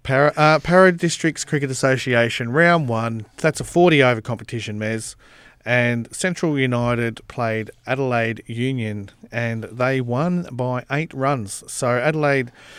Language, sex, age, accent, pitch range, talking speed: English, male, 40-59, Australian, 125-165 Hz, 125 wpm